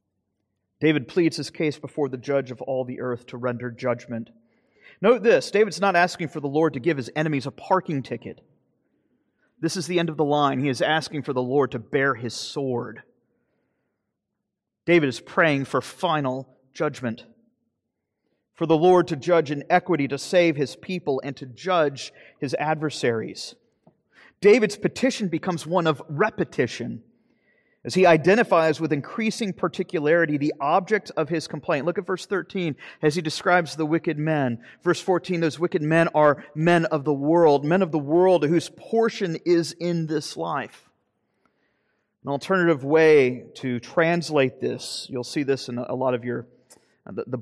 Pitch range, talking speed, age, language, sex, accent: 130-175 Hz, 165 wpm, 30-49, English, male, American